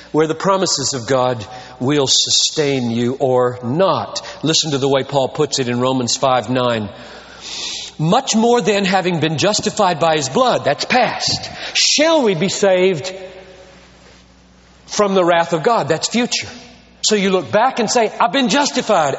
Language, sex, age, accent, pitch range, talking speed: English, male, 40-59, American, 160-240 Hz, 165 wpm